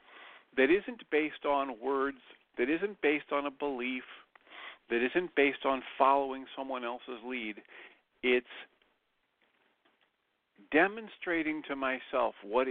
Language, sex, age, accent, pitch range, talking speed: English, male, 50-69, American, 115-145 Hz, 115 wpm